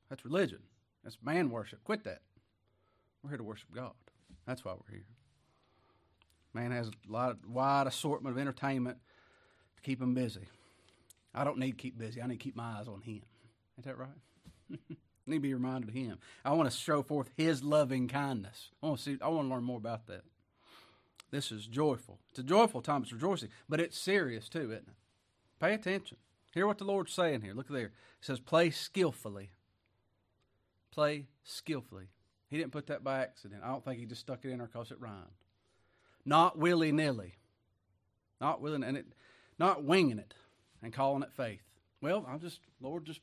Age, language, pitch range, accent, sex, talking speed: 40-59, English, 110-155 Hz, American, male, 195 wpm